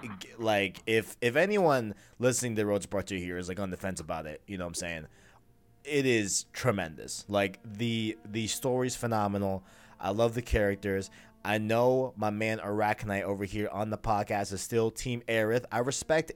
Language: English